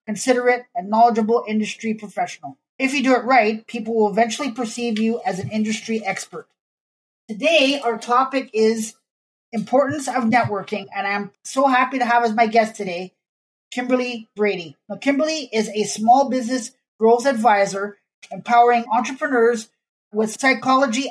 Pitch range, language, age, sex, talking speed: 210-250 Hz, English, 30-49, male, 140 wpm